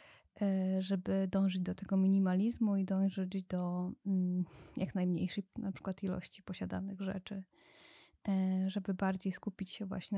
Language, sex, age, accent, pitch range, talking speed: Polish, female, 20-39, native, 185-205 Hz, 120 wpm